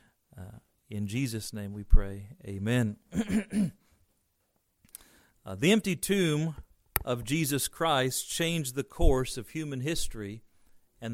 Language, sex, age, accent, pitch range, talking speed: English, male, 40-59, American, 110-155 Hz, 115 wpm